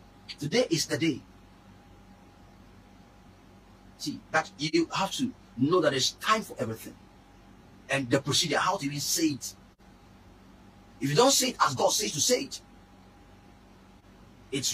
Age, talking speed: 40-59, 145 wpm